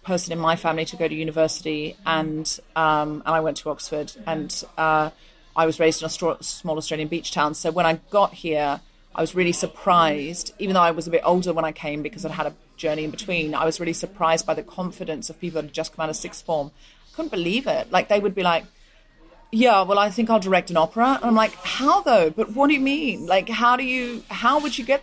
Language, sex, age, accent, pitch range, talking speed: English, female, 30-49, British, 160-215 Hz, 250 wpm